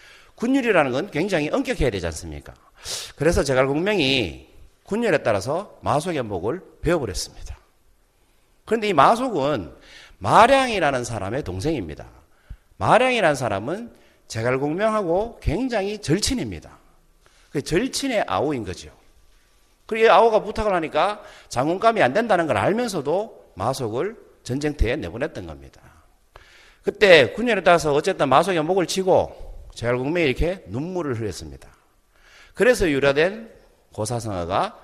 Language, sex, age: Korean, male, 40-59